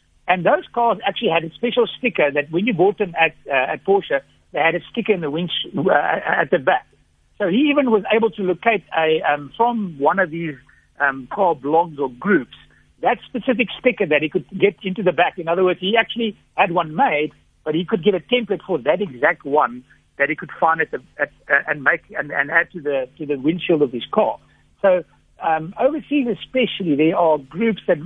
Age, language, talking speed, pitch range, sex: 60-79, English, 220 wpm, 155-210 Hz, male